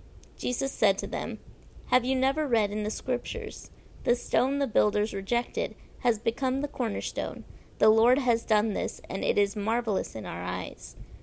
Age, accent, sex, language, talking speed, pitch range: 30-49, American, female, English, 170 wpm, 210-265 Hz